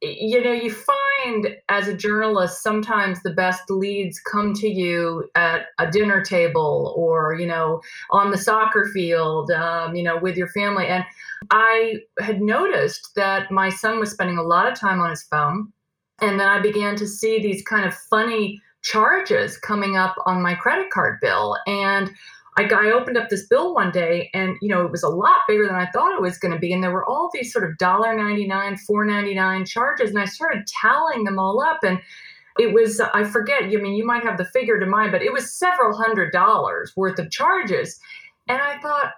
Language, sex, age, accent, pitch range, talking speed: English, female, 40-59, American, 185-225 Hz, 205 wpm